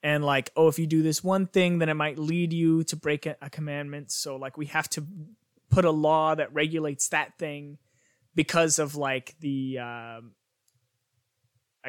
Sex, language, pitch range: male, English, 130-180 Hz